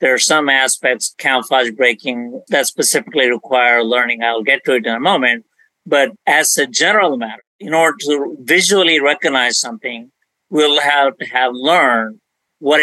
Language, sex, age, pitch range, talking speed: English, male, 50-69, 125-150 Hz, 160 wpm